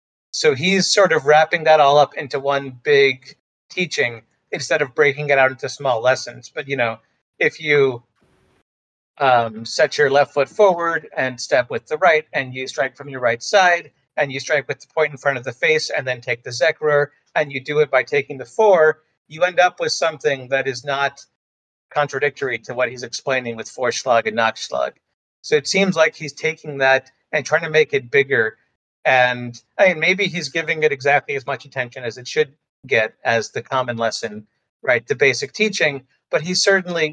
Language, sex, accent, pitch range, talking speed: English, male, American, 120-155 Hz, 200 wpm